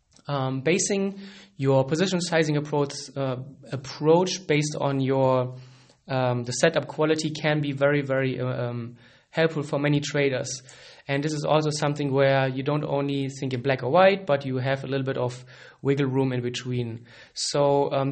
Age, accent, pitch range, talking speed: 20-39, German, 130-150 Hz, 170 wpm